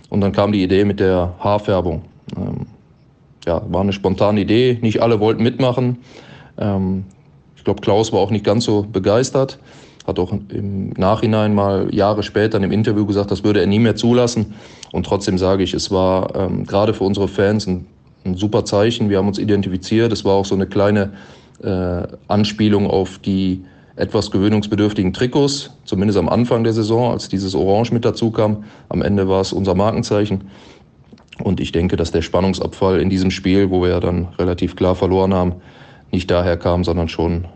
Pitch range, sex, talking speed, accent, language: 95-110 Hz, male, 185 wpm, German, German